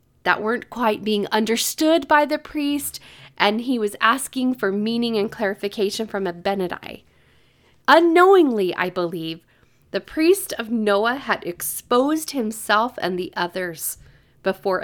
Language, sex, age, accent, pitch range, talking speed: English, female, 40-59, American, 185-275 Hz, 130 wpm